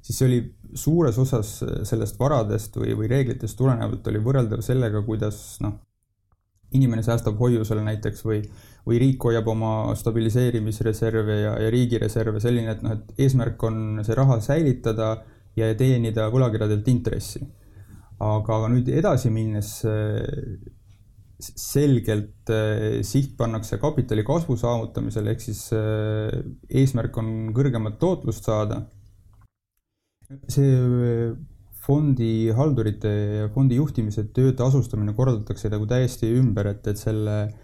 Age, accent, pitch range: 20-39, Finnish, 110-125 Hz